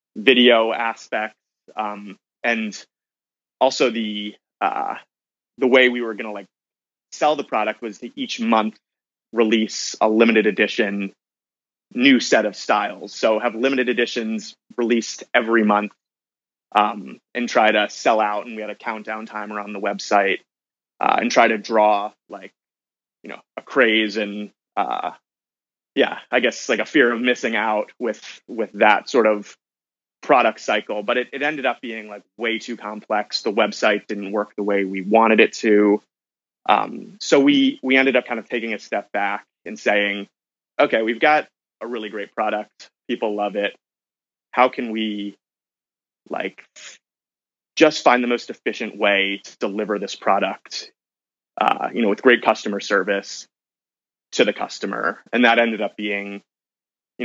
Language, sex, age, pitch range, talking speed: English, male, 20-39, 105-120 Hz, 160 wpm